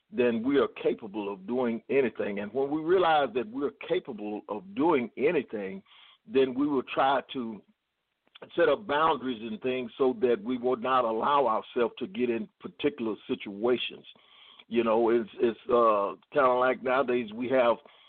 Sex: male